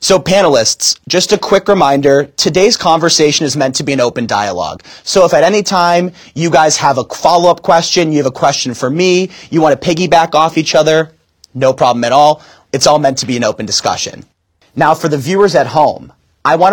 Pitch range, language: 130-175 Hz, English